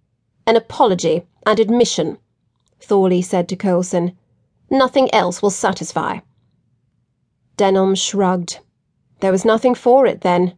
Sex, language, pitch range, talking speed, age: female, English, 185-240 Hz, 115 wpm, 30-49